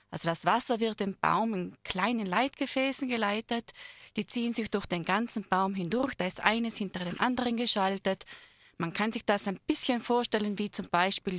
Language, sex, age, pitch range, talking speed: German, female, 20-39, 180-235 Hz, 185 wpm